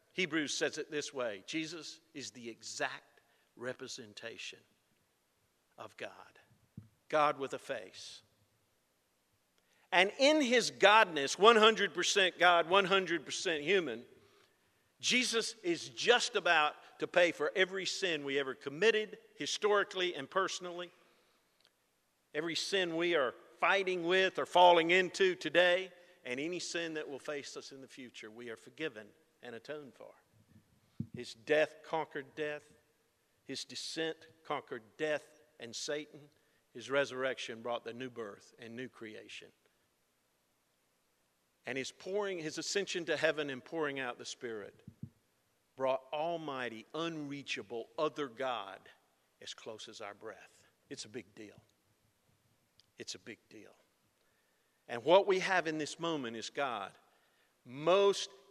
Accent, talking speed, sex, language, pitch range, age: American, 125 wpm, male, English, 120-180 Hz, 50-69